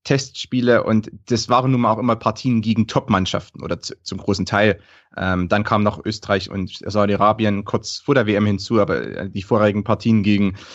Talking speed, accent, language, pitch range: 180 wpm, German, German, 100-115 Hz